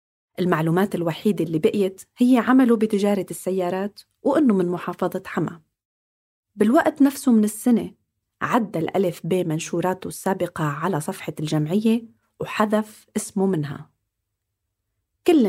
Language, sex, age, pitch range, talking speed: Arabic, female, 30-49, 165-215 Hz, 110 wpm